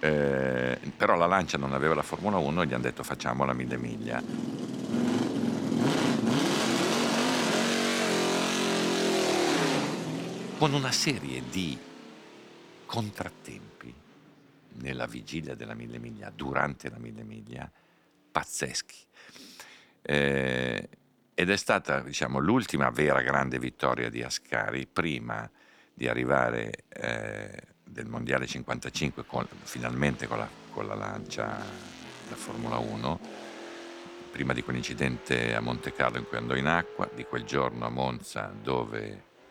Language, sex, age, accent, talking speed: Italian, male, 60-79, native, 115 wpm